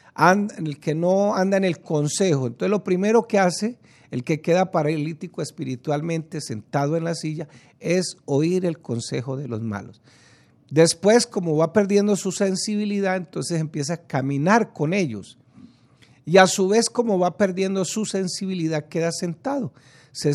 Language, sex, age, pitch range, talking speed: Spanish, male, 50-69, 140-190 Hz, 155 wpm